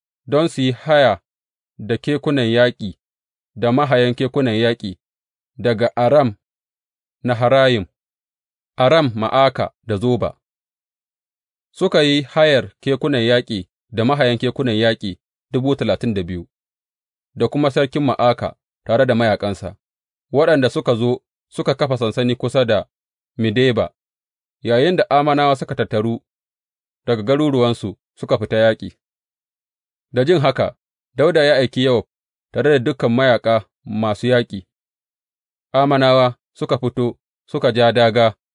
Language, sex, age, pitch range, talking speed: English, male, 30-49, 100-130 Hz, 110 wpm